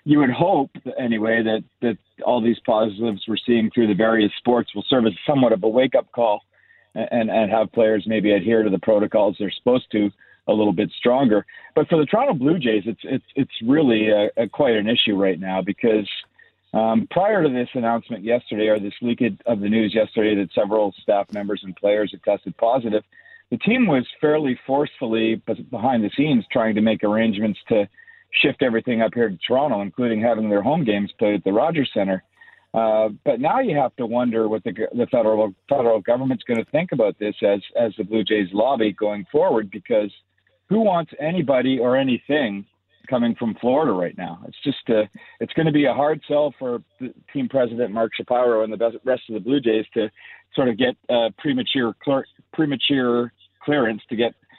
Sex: male